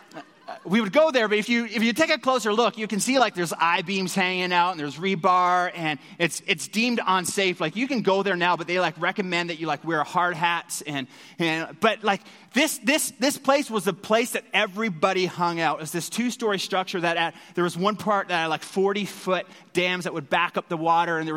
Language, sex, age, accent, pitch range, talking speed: English, male, 30-49, American, 170-215 Hz, 240 wpm